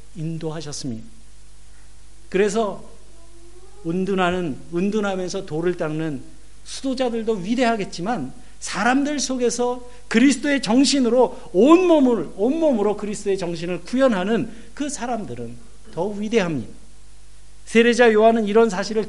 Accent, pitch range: native, 155-235 Hz